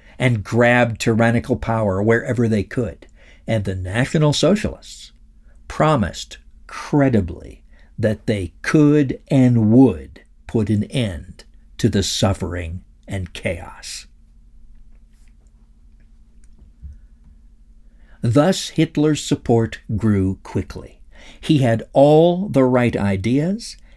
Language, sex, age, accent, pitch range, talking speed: English, male, 60-79, American, 90-130 Hz, 95 wpm